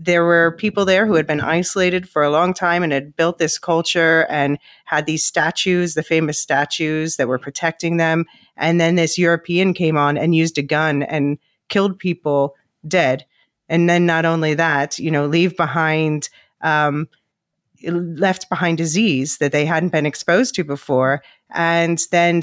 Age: 30-49